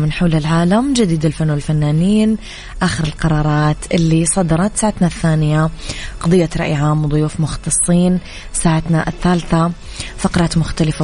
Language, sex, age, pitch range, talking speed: English, female, 20-39, 160-180 Hz, 110 wpm